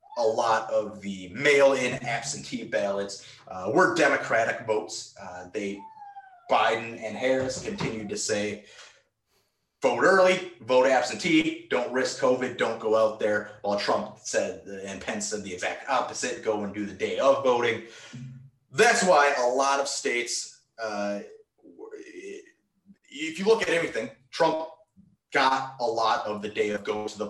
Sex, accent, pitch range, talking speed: male, American, 100-165 Hz, 150 wpm